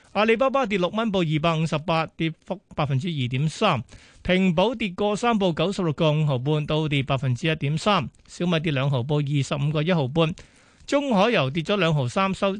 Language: Chinese